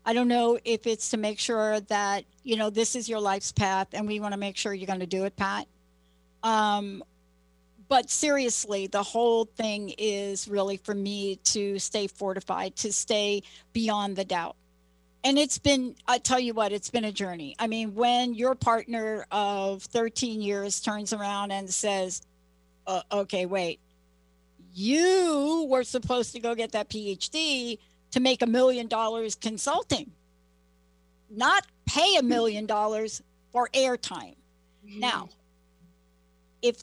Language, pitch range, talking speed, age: English, 180-245 Hz, 155 wpm, 60-79